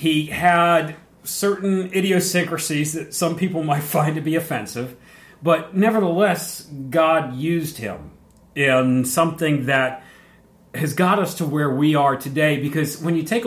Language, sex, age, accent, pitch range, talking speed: English, male, 40-59, American, 135-180 Hz, 145 wpm